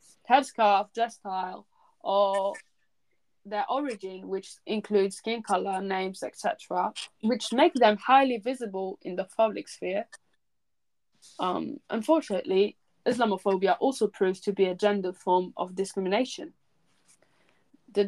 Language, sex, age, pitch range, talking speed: English, female, 20-39, 195-250 Hz, 115 wpm